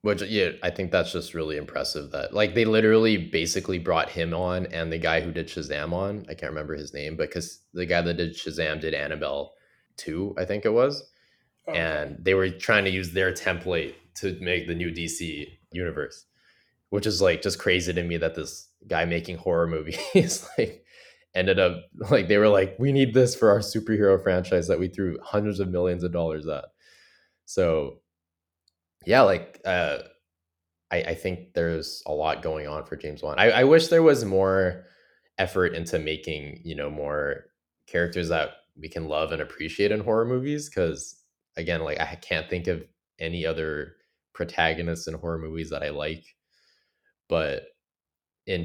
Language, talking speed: English, 180 wpm